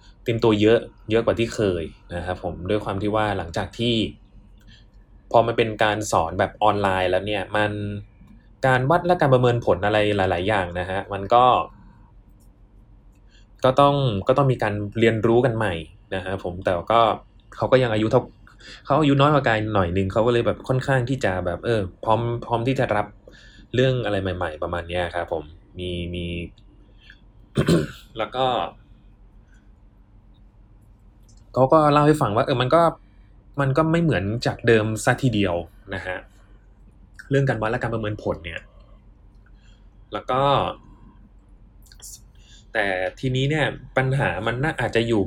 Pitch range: 100-120 Hz